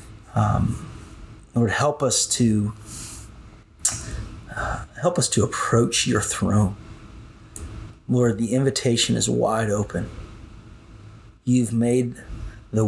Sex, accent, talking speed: male, American, 100 wpm